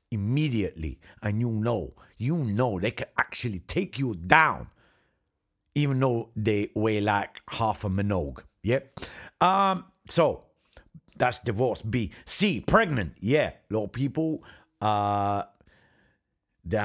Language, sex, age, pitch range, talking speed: English, male, 50-69, 95-125 Hz, 130 wpm